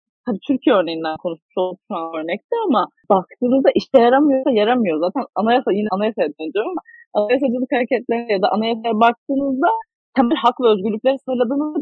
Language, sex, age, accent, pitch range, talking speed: Turkish, female, 30-49, native, 200-270 Hz, 145 wpm